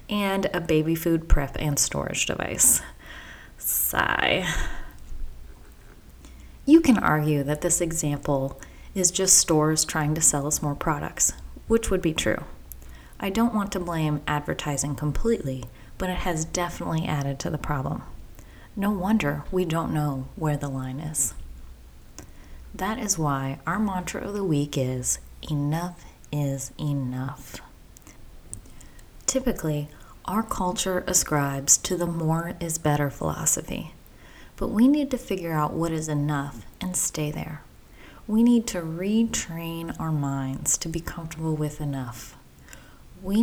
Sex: female